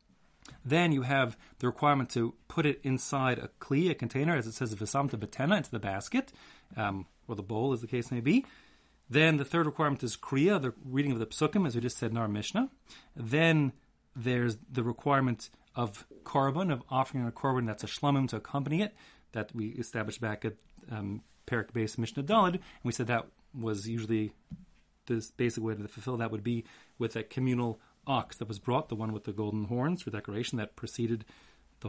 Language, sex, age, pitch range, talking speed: English, male, 30-49, 110-140 Hz, 190 wpm